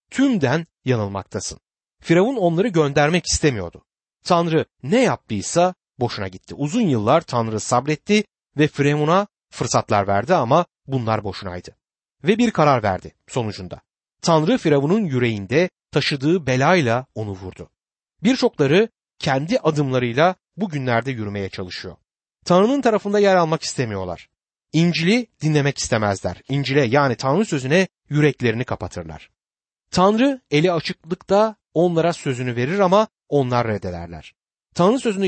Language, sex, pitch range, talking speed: Turkish, male, 120-185 Hz, 110 wpm